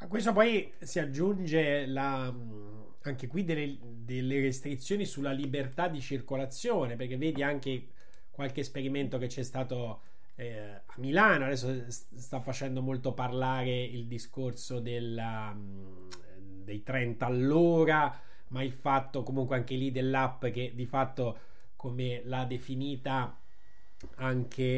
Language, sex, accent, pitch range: Italian, male, native, 125-145 Hz